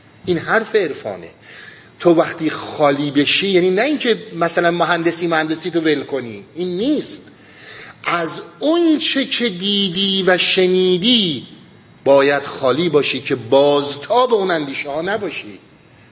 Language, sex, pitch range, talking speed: Persian, male, 120-185 Hz, 125 wpm